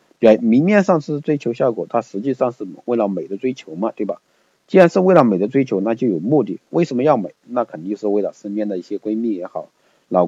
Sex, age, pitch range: male, 50-69, 95-110 Hz